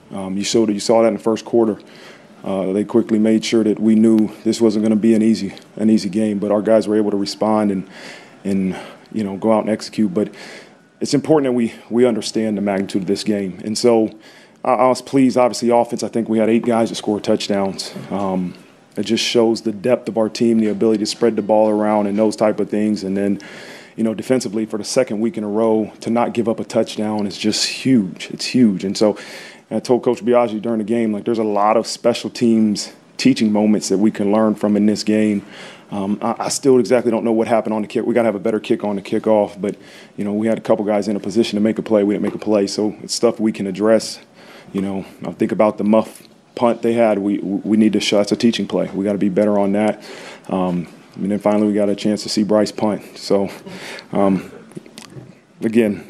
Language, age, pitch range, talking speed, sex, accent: English, 30-49, 105-115 Hz, 250 wpm, male, American